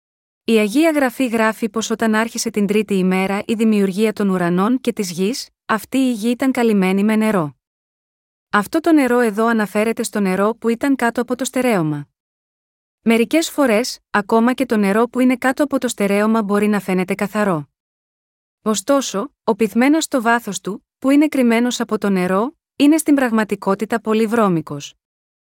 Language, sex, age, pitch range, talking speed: Greek, female, 20-39, 205-255 Hz, 165 wpm